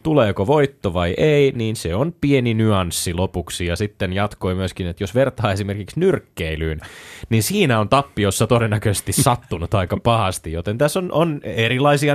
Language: Finnish